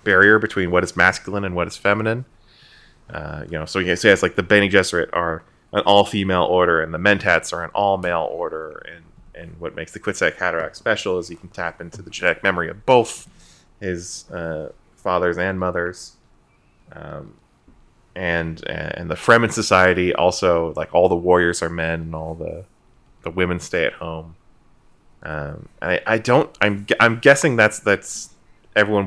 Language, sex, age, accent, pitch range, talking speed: English, male, 20-39, American, 85-100 Hz, 180 wpm